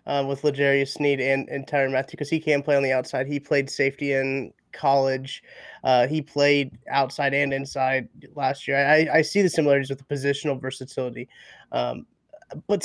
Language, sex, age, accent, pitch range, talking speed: English, male, 20-39, American, 135-150 Hz, 180 wpm